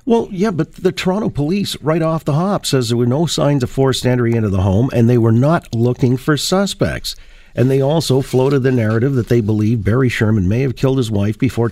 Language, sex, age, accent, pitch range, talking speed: English, male, 50-69, American, 100-130 Hz, 230 wpm